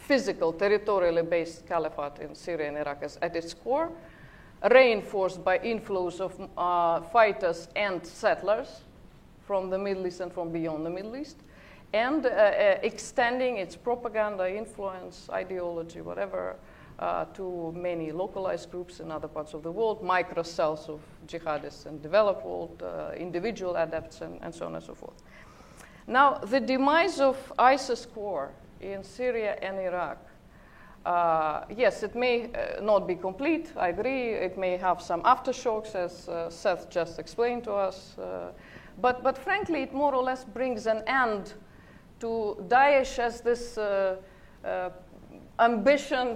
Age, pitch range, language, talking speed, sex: 50-69, 175-240 Hz, English, 150 wpm, female